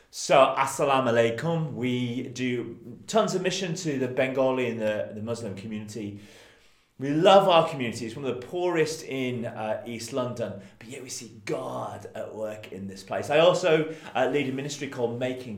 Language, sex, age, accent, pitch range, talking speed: English, male, 30-49, British, 110-155 Hz, 180 wpm